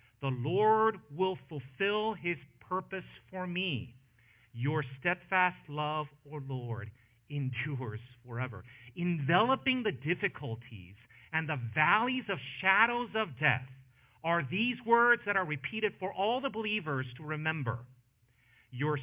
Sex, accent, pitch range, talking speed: male, American, 120-195 Hz, 120 wpm